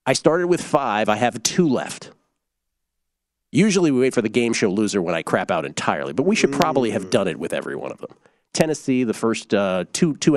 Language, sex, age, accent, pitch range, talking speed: English, male, 40-59, American, 110-150 Hz, 225 wpm